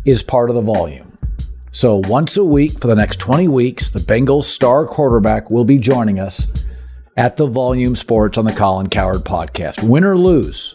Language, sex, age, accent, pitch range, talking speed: English, male, 50-69, American, 100-140 Hz, 190 wpm